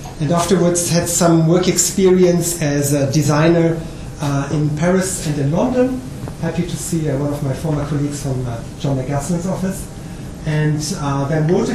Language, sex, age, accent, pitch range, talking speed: English, male, 30-49, German, 145-190 Hz, 170 wpm